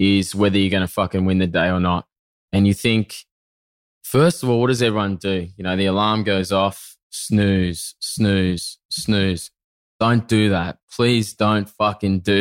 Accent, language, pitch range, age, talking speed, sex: Australian, English, 95-115 Hz, 20-39, 180 wpm, male